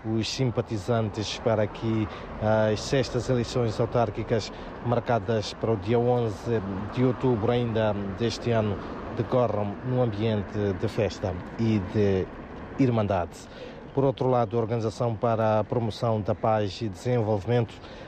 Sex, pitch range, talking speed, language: male, 105-120 Hz, 125 wpm, Portuguese